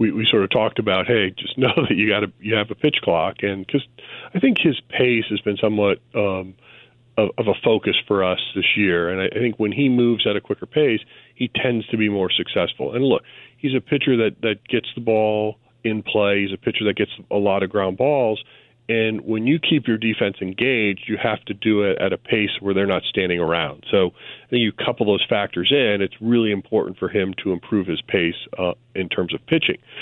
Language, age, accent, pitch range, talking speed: English, 40-59, American, 100-115 Hz, 230 wpm